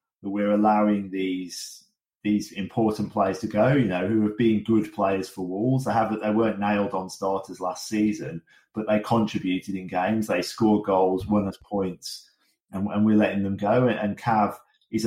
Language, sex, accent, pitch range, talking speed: English, male, British, 95-110 Hz, 185 wpm